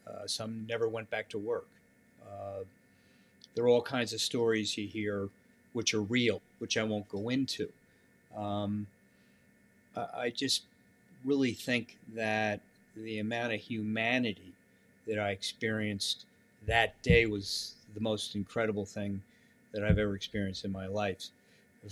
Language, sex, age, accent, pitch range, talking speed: English, male, 40-59, American, 105-120 Hz, 145 wpm